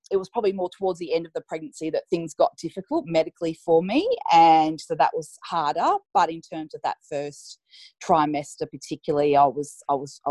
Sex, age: female, 20-39